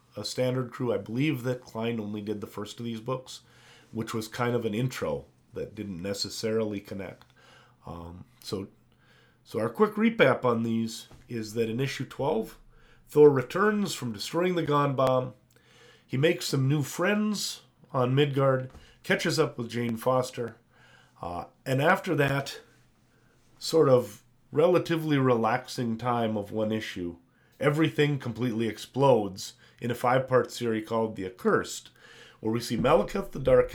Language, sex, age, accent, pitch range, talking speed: English, male, 30-49, American, 110-140 Hz, 150 wpm